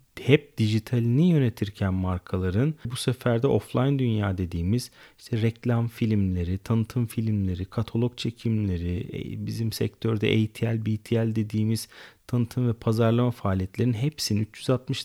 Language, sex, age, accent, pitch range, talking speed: Turkish, male, 40-59, native, 100-130 Hz, 110 wpm